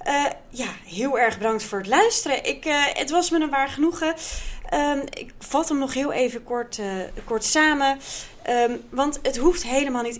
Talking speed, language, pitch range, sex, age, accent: 190 wpm, Dutch, 190-260 Hz, female, 30-49, Dutch